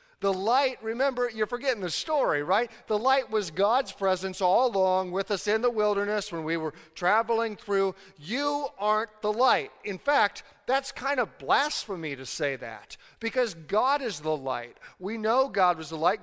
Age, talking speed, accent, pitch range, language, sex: 40-59, 180 wpm, American, 150-210 Hz, English, male